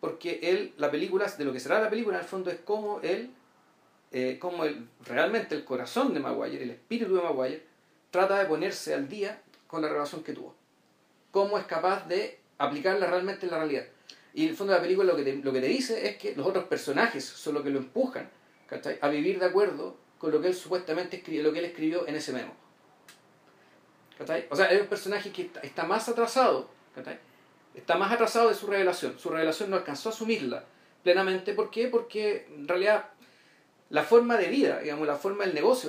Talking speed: 210 wpm